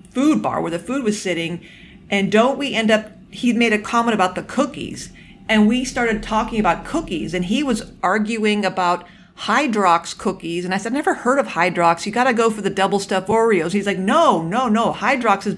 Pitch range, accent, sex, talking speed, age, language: 195-250 Hz, American, female, 215 wpm, 40-59, English